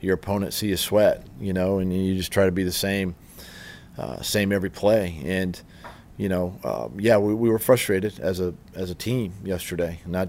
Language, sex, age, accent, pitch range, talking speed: English, male, 40-59, American, 90-100 Hz, 205 wpm